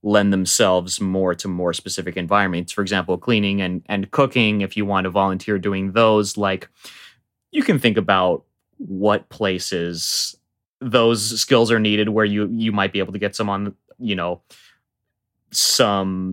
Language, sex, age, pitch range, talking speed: English, male, 20-39, 95-110 Hz, 160 wpm